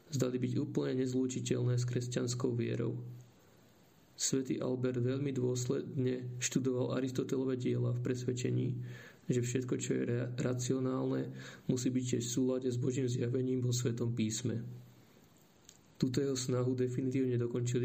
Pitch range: 120-130 Hz